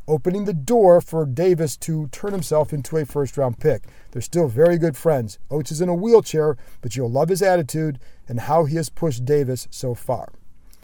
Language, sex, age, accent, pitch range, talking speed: English, male, 40-59, American, 135-170 Hz, 195 wpm